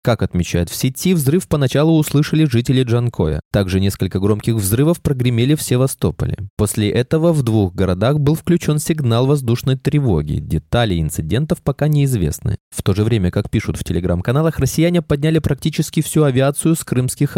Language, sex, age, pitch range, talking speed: Russian, male, 20-39, 105-150 Hz, 155 wpm